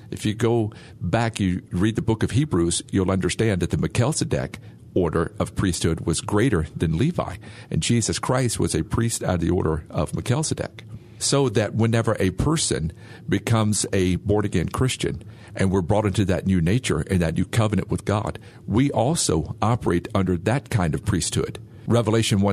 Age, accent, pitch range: 50-69, American, 95-115 Hz